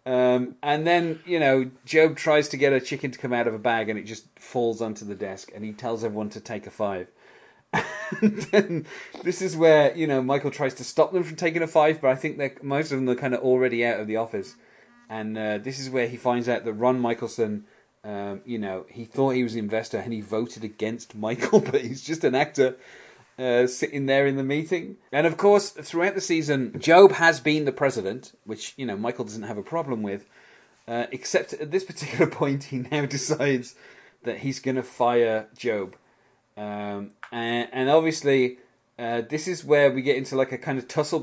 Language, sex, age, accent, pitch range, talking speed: English, male, 30-49, British, 115-150 Hz, 220 wpm